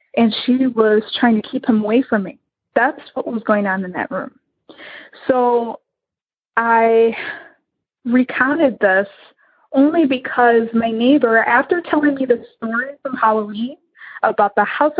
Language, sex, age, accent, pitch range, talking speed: English, female, 20-39, American, 220-275 Hz, 145 wpm